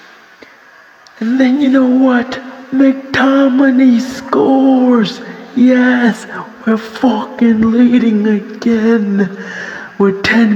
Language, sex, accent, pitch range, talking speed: English, male, American, 175-235 Hz, 80 wpm